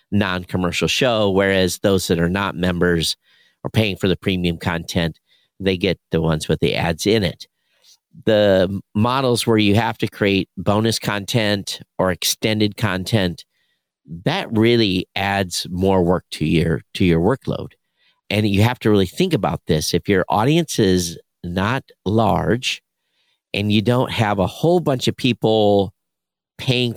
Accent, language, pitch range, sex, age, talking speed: American, English, 90-110 Hz, male, 50-69, 155 wpm